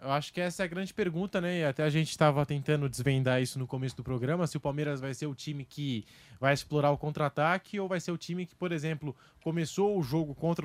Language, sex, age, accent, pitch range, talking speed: English, male, 20-39, Brazilian, 140-180 Hz, 250 wpm